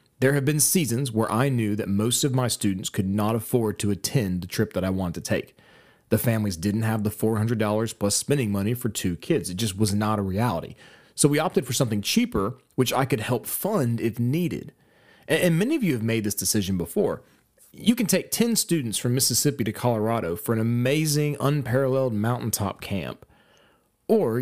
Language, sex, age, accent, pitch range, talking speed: English, male, 30-49, American, 105-140 Hz, 195 wpm